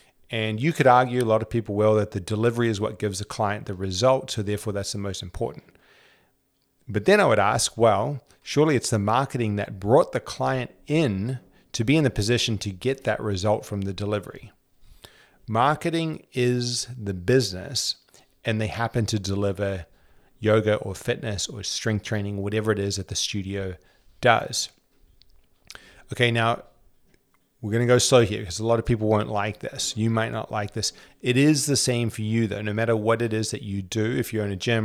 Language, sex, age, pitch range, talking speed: English, male, 30-49, 105-120 Hz, 200 wpm